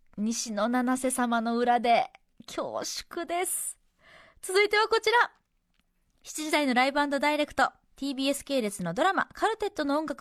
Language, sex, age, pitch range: Japanese, female, 20-39, 255-375 Hz